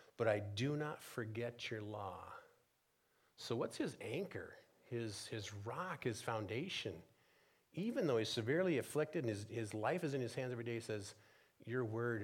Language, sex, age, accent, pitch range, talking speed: English, male, 40-59, American, 110-135 Hz, 170 wpm